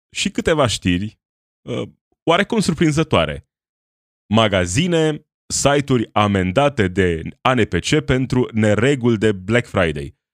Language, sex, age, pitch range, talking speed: Romanian, male, 20-39, 95-135 Hz, 85 wpm